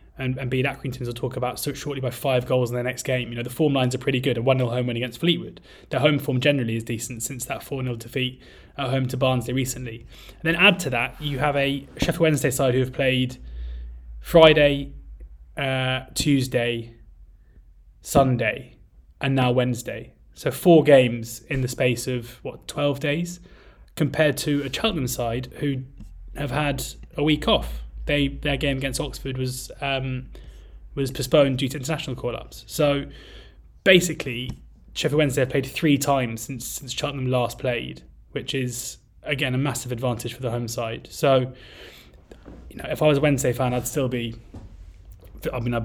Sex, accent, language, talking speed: male, British, English, 180 wpm